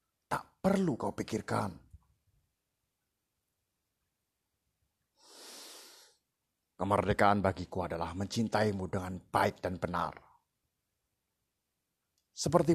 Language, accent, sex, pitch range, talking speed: Indonesian, native, male, 90-115 Hz, 55 wpm